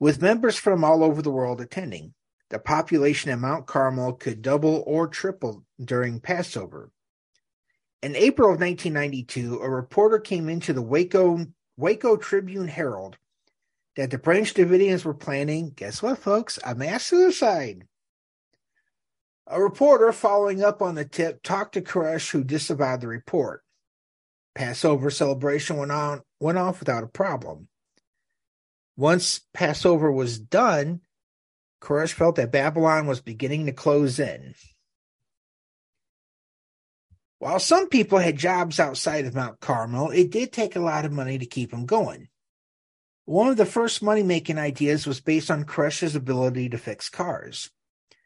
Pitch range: 130-180 Hz